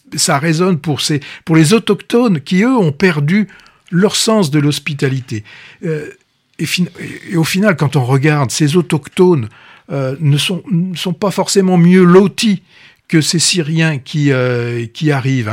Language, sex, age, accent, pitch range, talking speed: French, male, 60-79, French, 145-185 Hz, 160 wpm